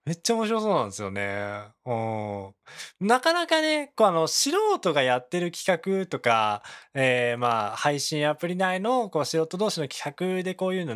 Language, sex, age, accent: Japanese, male, 20-39, native